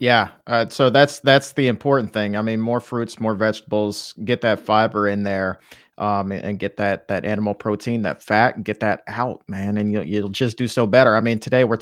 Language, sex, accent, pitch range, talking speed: English, male, American, 110-145 Hz, 225 wpm